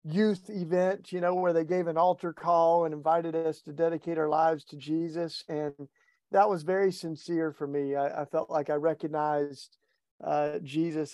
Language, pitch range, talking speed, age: English, 150-190 Hz, 185 wpm, 50-69